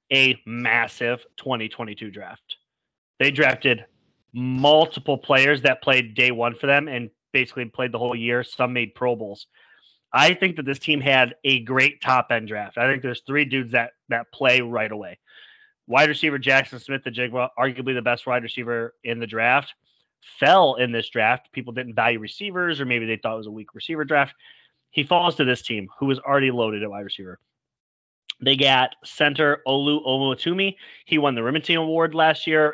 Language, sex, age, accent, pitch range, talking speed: English, male, 30-49, American, 120-145 Hz, 185 wpm